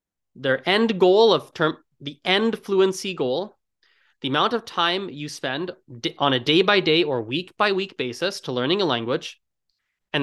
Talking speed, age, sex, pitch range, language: 155 wpm, 20-39, male, 135-190 Hz, English